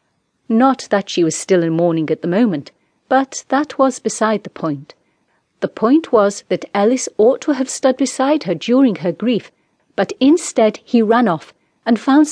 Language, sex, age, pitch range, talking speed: English, female, 40-59, 170-245 Hz, 180 wpm